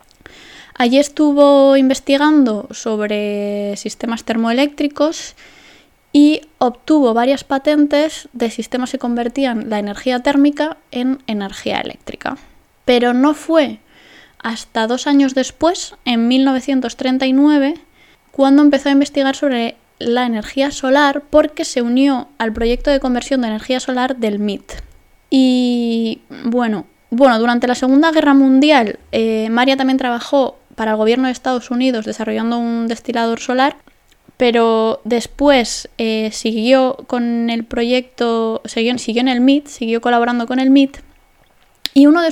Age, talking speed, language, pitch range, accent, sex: 20-39, 130 wpm, Spanish, 235-280 Hz, Spanish, female